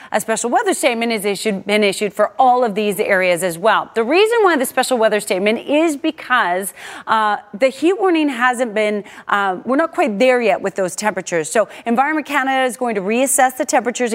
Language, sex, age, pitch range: English, female, 30-49, 210-290 Hz